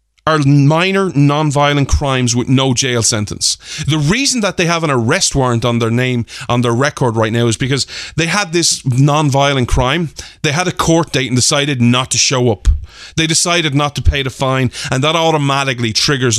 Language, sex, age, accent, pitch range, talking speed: English, male, 30-49, Irish, 125-175 Hz, 195 wpm